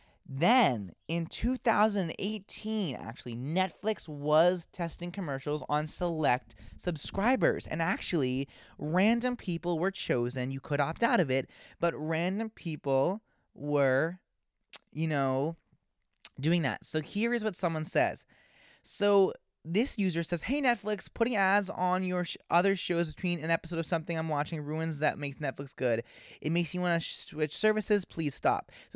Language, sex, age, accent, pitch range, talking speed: English, male, 20-39, American, 150-195 Hz, 150 wpm